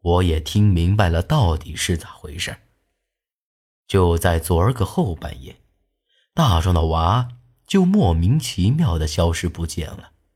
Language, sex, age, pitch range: Chinese, male, 30-49, 80-120 Hz